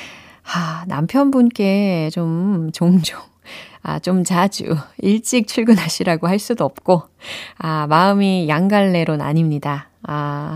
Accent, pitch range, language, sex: native, 155-215 Hz, Korean, female